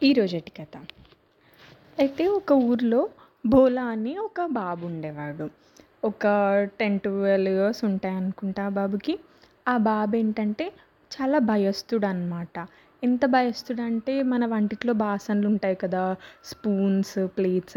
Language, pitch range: English, 190-255 Hz